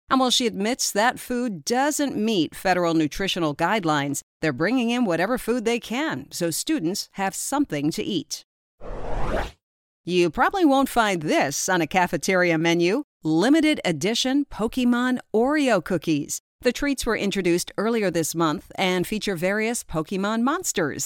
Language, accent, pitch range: English, American, 170-255 Hz